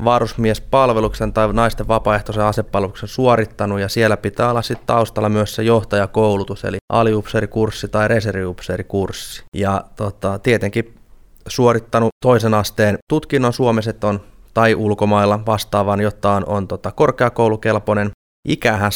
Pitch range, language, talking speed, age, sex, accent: 100-115 Hz, Finnish, 115 wpm, 20-39, male, native